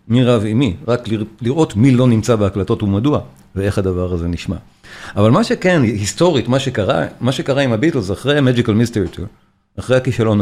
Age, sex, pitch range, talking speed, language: 40-59, male, 105-135 Hz, 175 wpm, Hebrew